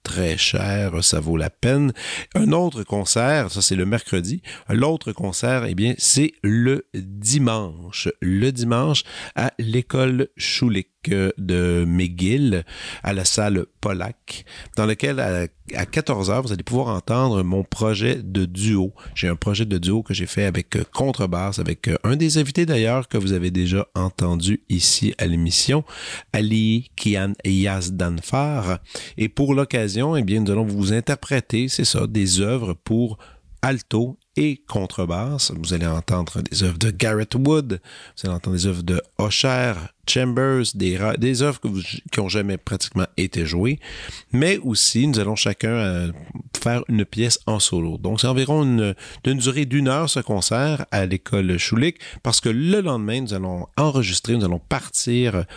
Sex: male